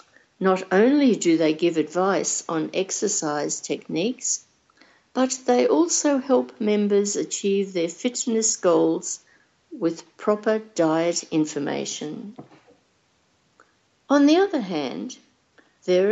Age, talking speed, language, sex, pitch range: 60-79, 100 wpm, English, female, 175-250 Hz